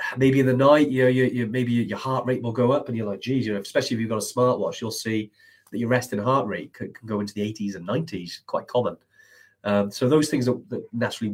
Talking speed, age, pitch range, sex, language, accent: 270 wpm, 30-49, 110-130 Hz, male, English, British